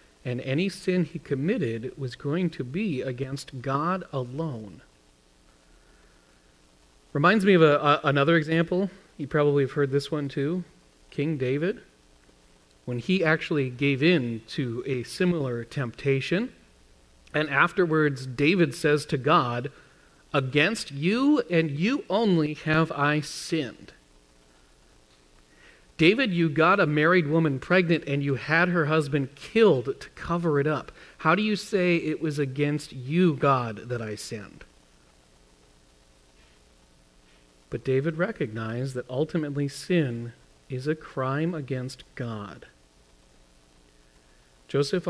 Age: 40-59